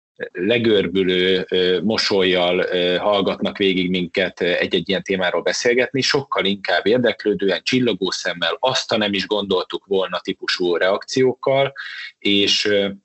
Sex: male